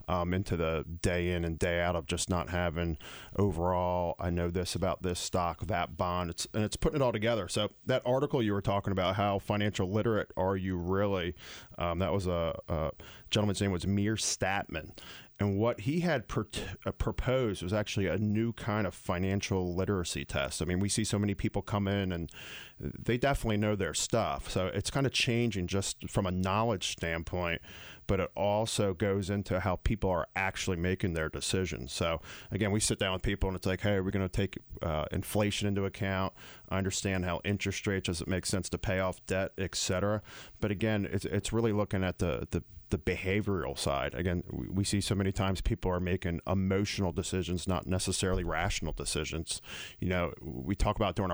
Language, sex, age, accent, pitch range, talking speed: English, male, 40-59, American, 90-105 Hz, 200 wpm